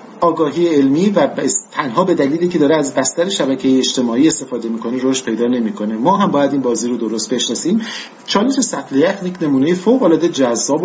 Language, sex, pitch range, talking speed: Persian, male, 130-175 Hz, 175 wpm